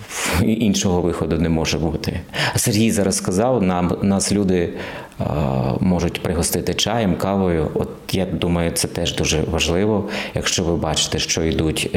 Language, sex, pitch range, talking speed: Ukrainian, male, 80-95 Hz, 145 wpm